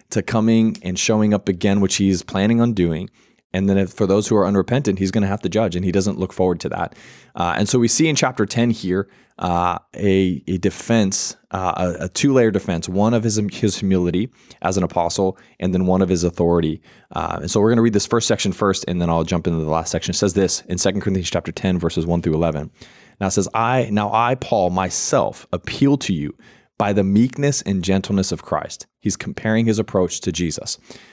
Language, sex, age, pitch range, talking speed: English, male, 20-39, 90-110 Hz, 230 wpm